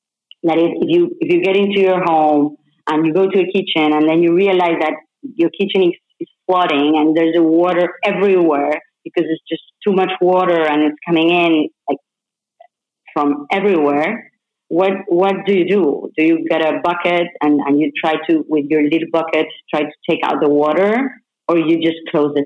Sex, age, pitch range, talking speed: female, 30-49, 155-190 Hz, 195 wpm